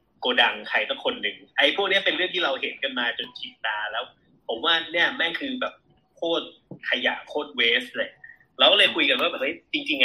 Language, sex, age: Thai, male, 30-49